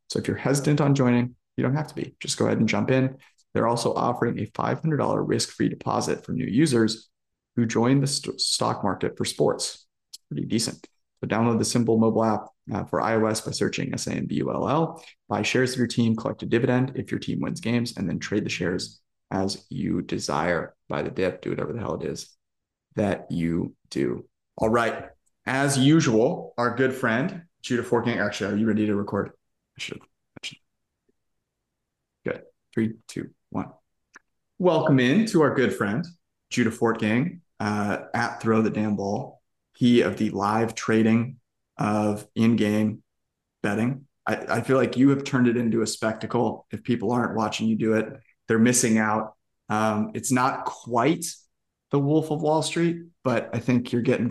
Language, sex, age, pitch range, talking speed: English, male, 30-49, 110-130 Hz, 180 wpm